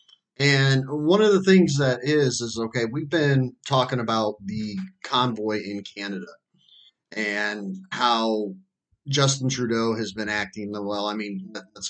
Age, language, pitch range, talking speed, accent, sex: 30-49, English, 105-130 Hz, 140 wpm, American, male